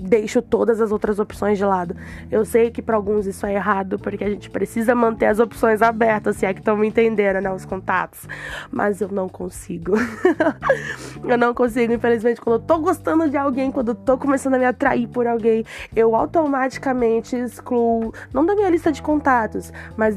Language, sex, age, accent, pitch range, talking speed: Portuguese, female, 20-39, Brazilian, 215-270 Hz, 195 wpm